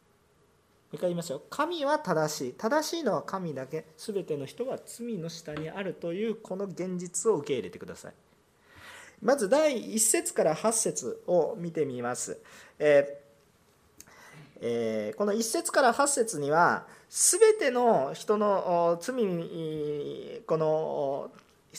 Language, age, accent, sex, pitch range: Japanese, 40-59, native, male, 175-270 Hz